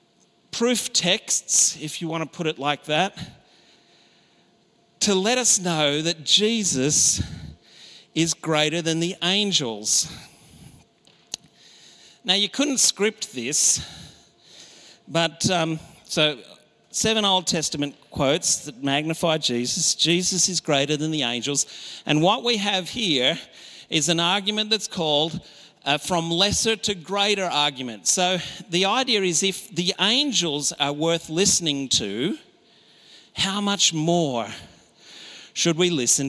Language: English